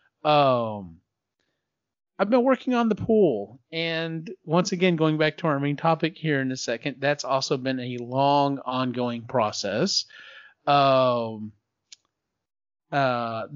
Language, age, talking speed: English, 30-49, 130 wpm